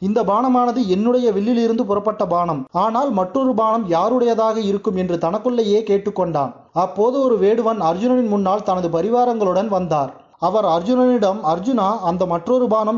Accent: native